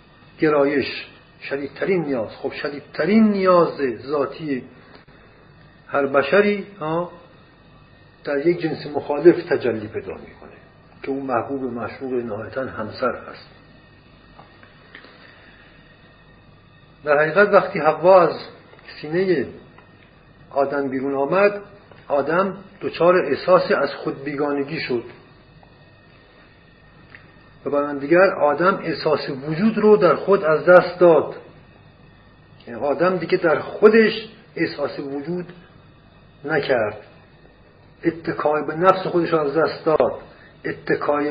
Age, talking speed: 50-69, 100 wpm